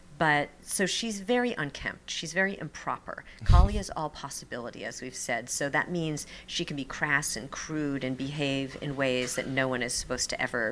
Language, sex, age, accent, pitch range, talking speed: English, female, 40-59, American, 135-175 Hz, 195 wpm